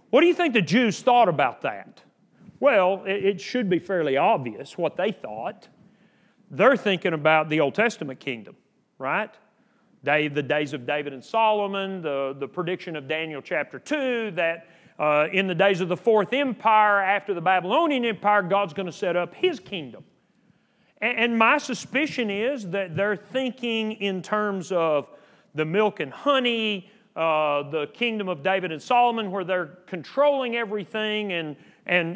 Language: English